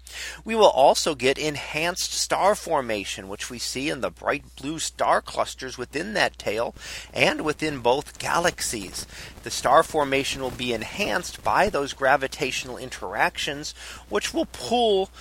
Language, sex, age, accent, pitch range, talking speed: English, male, 40-59, American, 120-155 Hz, 140 wpm